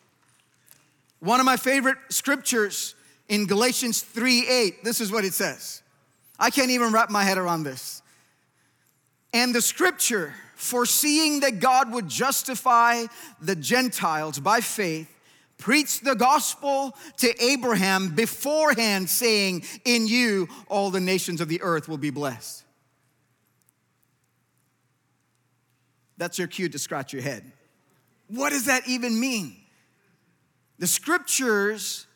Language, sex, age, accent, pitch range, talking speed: English, male, 30-49, American, 185-255 Hz, 120 wpm